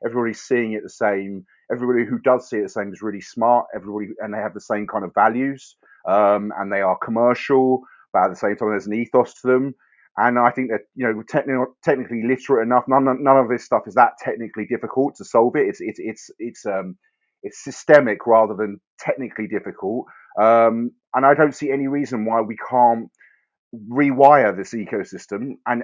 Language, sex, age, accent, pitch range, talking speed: English, male, 30-49, British, 110-135 Hz, 200 wpm